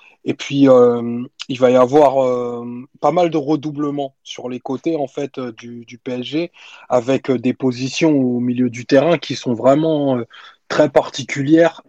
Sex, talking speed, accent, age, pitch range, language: male, 175 wpm, French, 20-39, 125-140 Hz, French